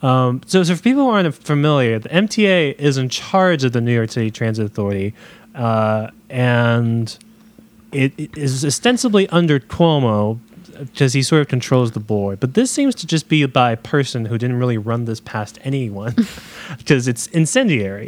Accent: American